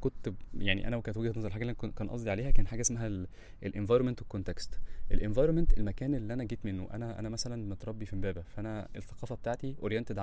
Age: 20-39